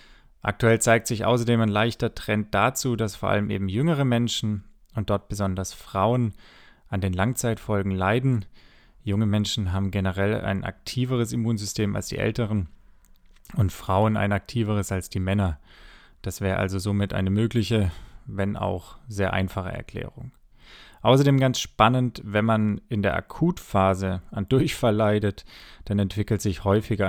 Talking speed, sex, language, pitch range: 145 wpm, male, German, 100-115 Hz